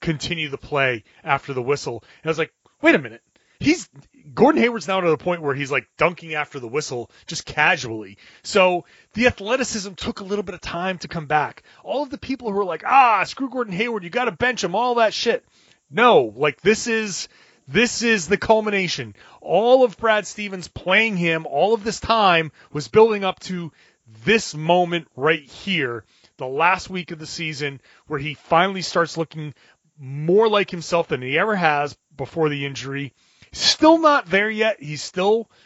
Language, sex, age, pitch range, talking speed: English, male, 30-49, 145-210 Hz, 190 wpm